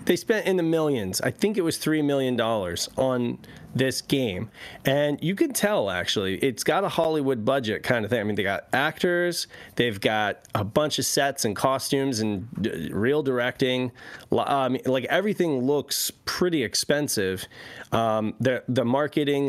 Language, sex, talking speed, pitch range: English, male, 165 wpm, 110-145 Hz